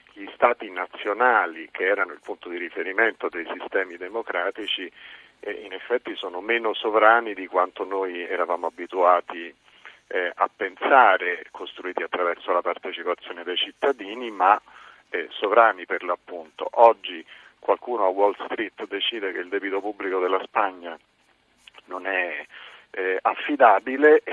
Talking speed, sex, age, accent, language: 120 wpm, male, 50-69, native, Italian